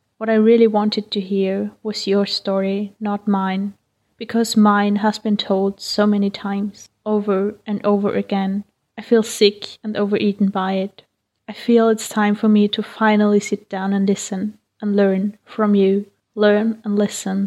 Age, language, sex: 20-39, English, female